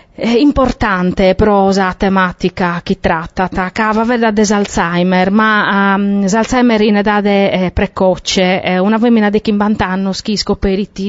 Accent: native